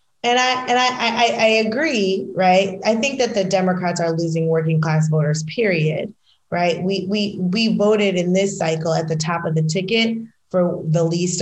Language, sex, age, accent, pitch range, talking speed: English, female, 20-39, American, 165-215 Hz, 190 wpm